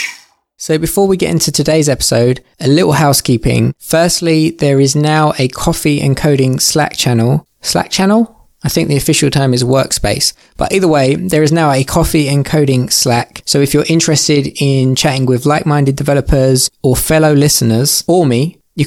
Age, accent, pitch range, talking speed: 20-39, British, 130-150 Hz, 175 wpm